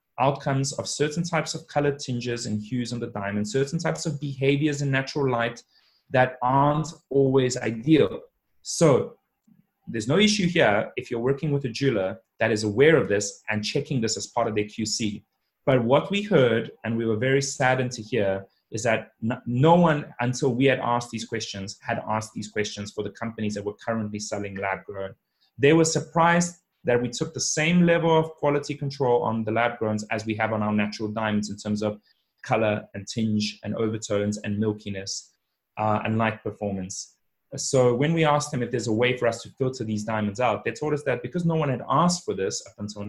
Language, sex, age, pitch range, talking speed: English, male, 30-49, 110-145 Hz, 205 wpm